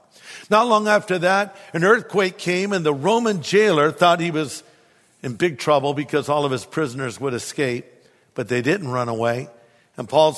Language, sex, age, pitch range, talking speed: English, male, 50-69, 140-185 Hz, 180 wpm